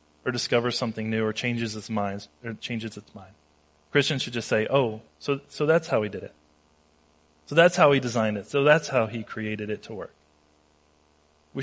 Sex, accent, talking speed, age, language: male, American, 200 wpm, 30-49, English